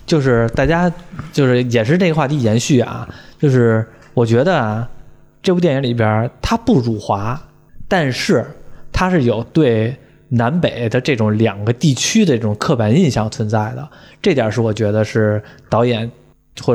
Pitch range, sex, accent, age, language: 115-155 Hz, male, native, 20-39, Chinese